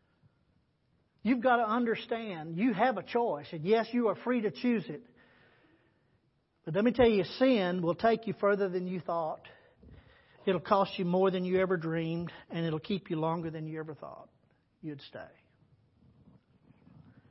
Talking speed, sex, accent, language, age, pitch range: 165 wpm, male, American, English, 40-59, 170-235 Hz